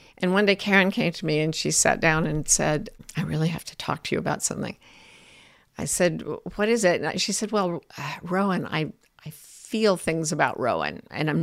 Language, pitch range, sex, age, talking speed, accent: English, 175-250 Hz, female, 50-69, 215 wpm, American